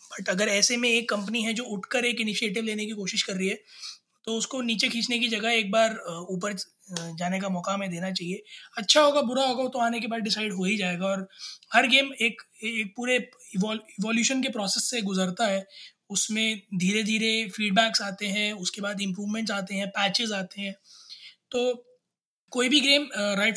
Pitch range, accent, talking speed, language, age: 200-240 Hz, native, 190 wpm, Hindi, 20-39